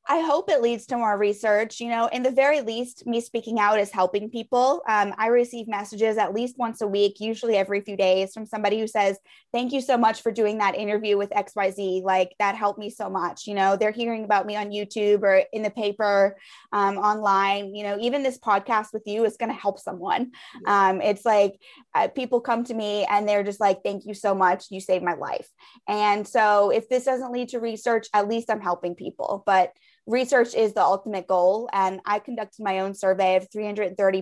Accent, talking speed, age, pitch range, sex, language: American, 220 wpm, 20-39, 200-225 Hz, female, English